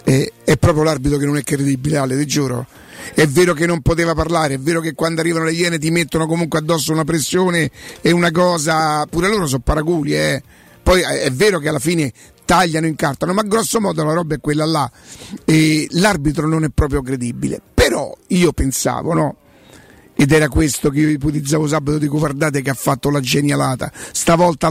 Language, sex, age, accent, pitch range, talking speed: Italian, male, 50-69, native, 145-170 Hz, 195 wpm